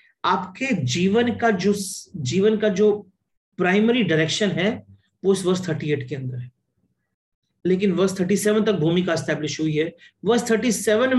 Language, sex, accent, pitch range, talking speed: Hindi, male, native, 155-210 Hz, 145 wpm